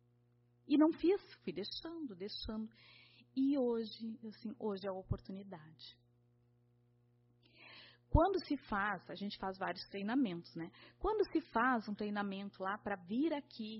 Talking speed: 135 wpm